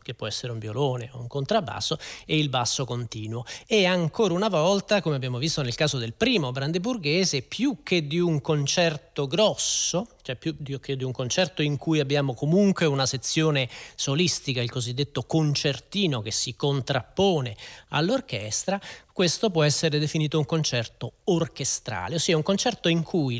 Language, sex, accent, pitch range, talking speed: Italian, male, native, 135-190 Hz, 160 wpm